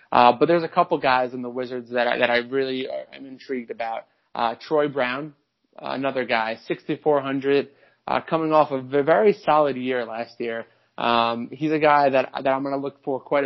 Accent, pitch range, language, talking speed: American, 125-150 Hz, English, 200 wpm